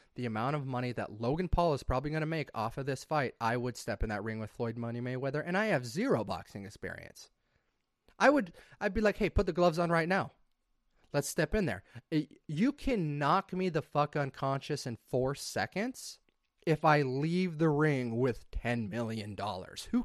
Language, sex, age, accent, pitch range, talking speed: English, male, 30-49, American, 125-170 Hz, 200 wpm